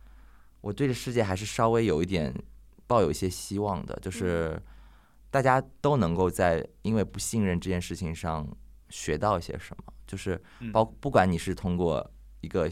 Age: 20-39